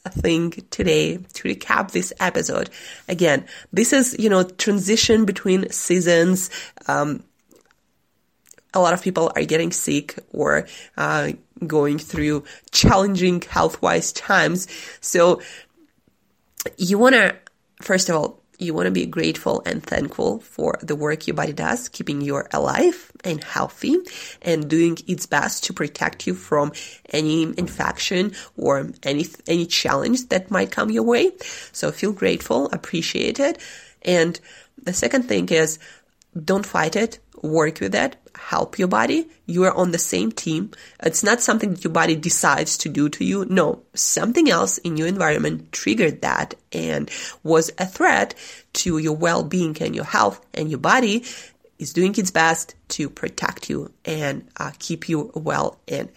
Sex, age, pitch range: female, 20-39, 160-220 Hz